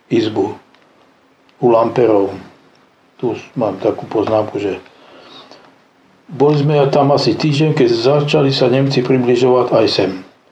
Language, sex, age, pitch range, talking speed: Slovak, male, 60-79, 125-140 Hz, 115 wpm